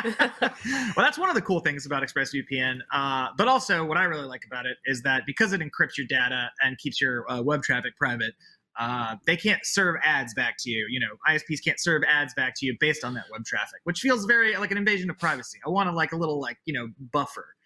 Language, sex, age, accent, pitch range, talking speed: English, male, 20-39, American, 140-200 Hz, 245 wpm